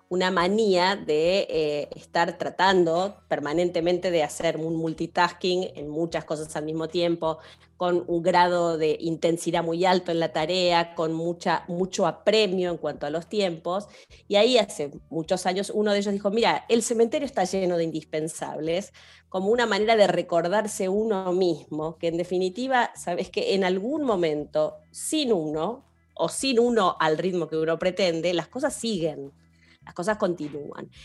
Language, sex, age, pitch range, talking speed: Spanish, female, 30-49, 160-195 Hz, 160 wpm